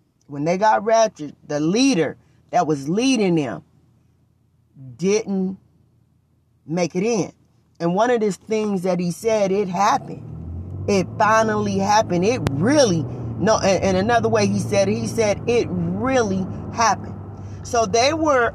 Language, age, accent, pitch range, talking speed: English, 40-59, American, 145-225 Hz, 140 wpm